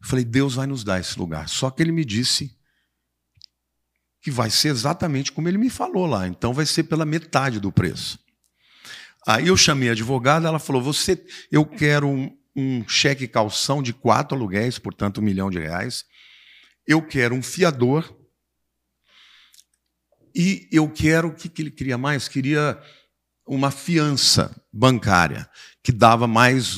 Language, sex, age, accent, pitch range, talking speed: Portuguese, male, 50-69, Brazilian, 95-145 Hz, 155 wpm